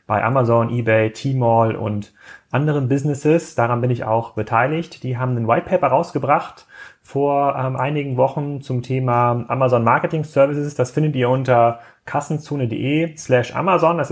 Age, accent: 30-49, German